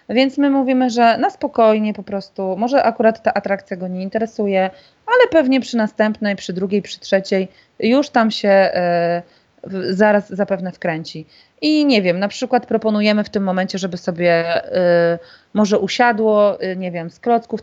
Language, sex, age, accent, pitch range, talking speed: Polish, female, 30-49, native, 185-240 Hz, 155 wpm